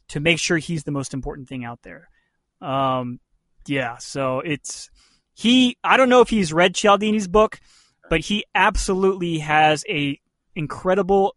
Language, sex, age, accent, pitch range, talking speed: English, male, 20-39, American, 145-190 Hz, 155 wpm